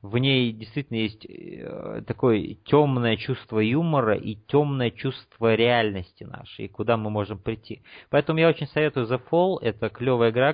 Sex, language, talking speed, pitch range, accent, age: male, Russian, 155 wpm, 110-135 Hz, native, 30-49